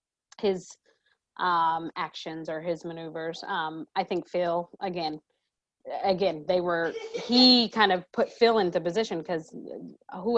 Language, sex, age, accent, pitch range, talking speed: English, female, 30-49, American, 175-225 Hz, 135 wpm